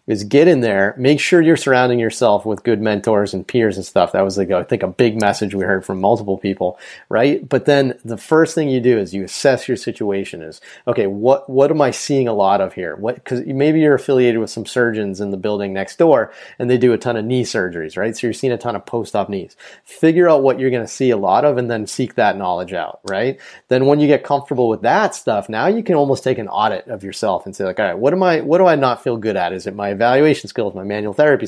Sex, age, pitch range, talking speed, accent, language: male, 30-49, 105-135 Hz, 265 wpm, American, English